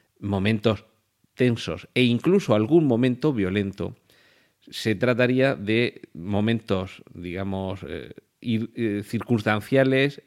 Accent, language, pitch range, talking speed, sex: Spanish, Spanish, 95-120 Hz, 80 wpm, male